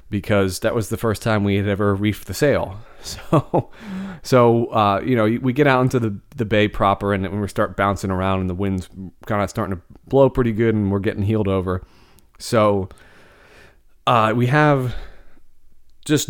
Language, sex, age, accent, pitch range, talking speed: English, male, 30-49, American, 95-115 Hz, 190 wpm